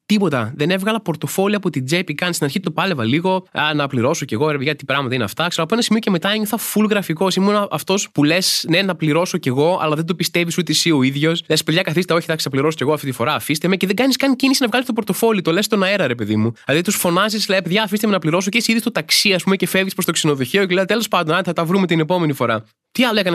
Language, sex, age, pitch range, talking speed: Greek, male, 20-39, 145-200 Hz, 290 wpm